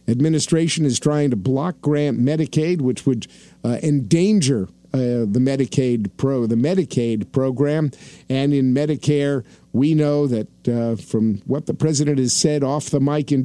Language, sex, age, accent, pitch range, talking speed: English, male, 50-69, American, 135-170 Hz, 155 wpm